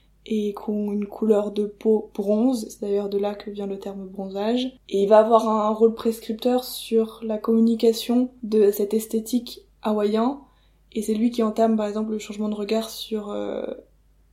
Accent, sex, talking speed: French, female, 180 wpm